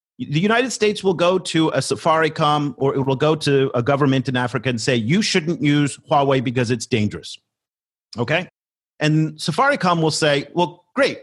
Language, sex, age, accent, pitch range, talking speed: English, male, 40-59, American, 135-170 Hz, 175 wpm